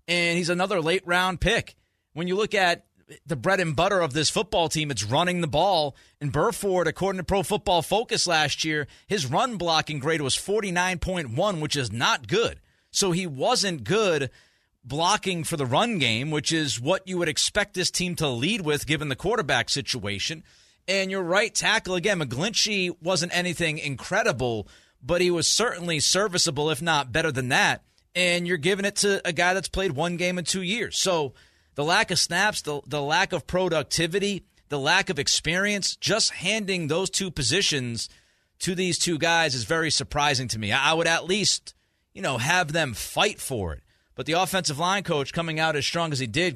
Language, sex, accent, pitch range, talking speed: English, male, American, 145-185 Hz, 190 wpm